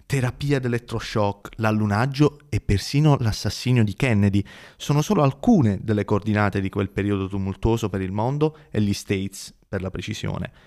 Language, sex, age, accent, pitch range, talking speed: Italian, male, 20-39, native, 100-125 Hz, 145 wpm